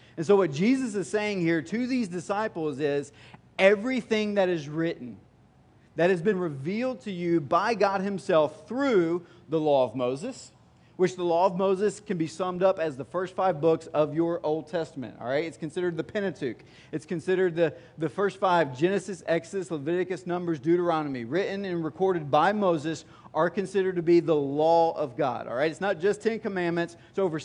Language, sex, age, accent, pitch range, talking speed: English, male, 30-49, American, 160-200 Hz, 190 wpm